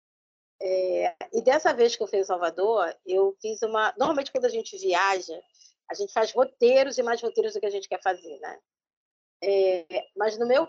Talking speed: 195 wpm